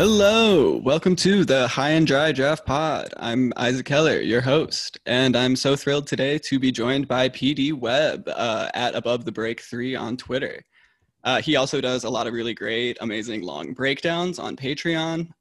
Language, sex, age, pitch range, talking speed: English, male, 20-39, 120-145 Hz, 185 wpm